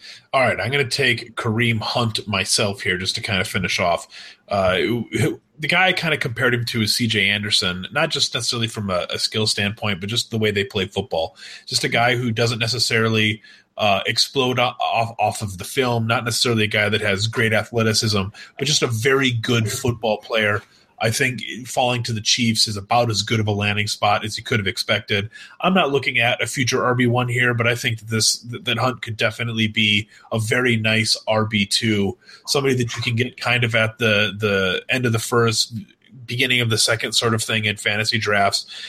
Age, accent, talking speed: 30-49, American, 210 wpm